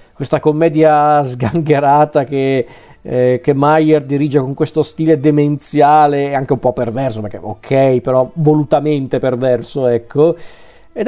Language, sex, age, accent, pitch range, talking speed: Italian, male, 40-59, native, 125-155 Hz, 130 wpm